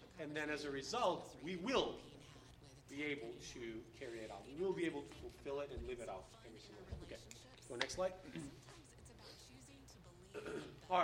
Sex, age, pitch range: male, 30-49, 150-195 Hz